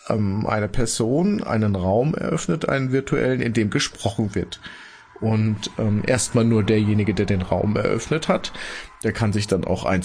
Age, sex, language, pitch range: 30-49, male, German, 90-110 Hz